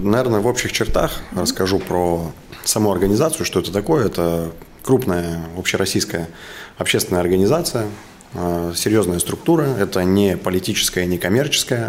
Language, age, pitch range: Russian, 20-39, 85-100 Hz